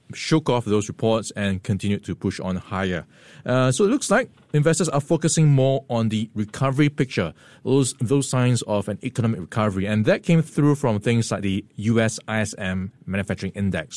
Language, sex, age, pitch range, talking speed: English, male, 20-39, 100-135 Hz, 180 wpm